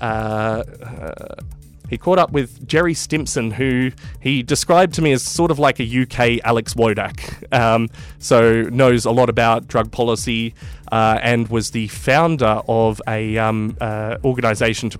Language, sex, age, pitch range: English, male, 20-39, 105-125 Hz